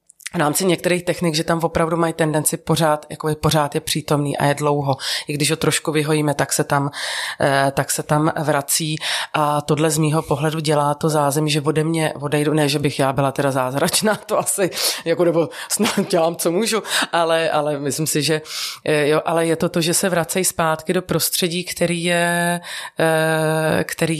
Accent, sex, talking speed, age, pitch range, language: native, female, 195 wpm, 30-49, 150-170 Hz, Czech